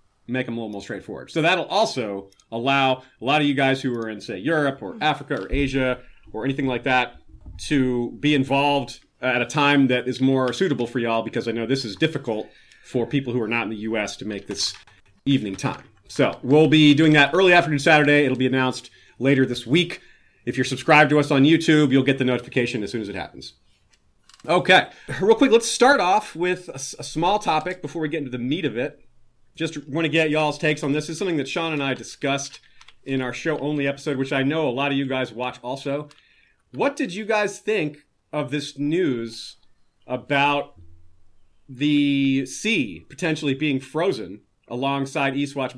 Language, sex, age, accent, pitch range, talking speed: English, male, 30-49, American, 120-150 Hz, 200 wpm